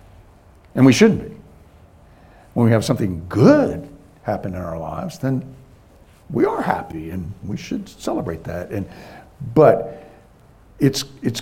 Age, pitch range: 60-79, 95-135 Hz